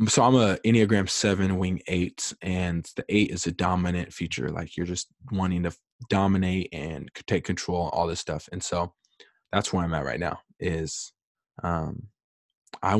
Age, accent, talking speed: 20-39, American, 170 wpm